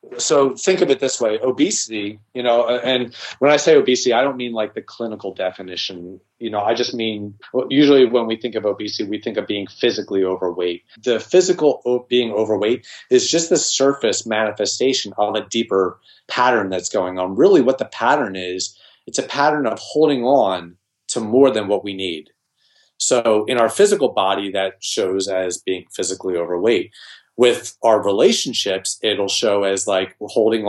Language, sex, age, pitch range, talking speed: English, male, 30-49, 100-125 Hz, 180 wpm